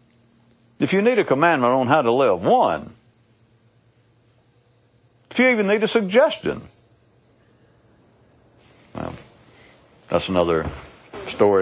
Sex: male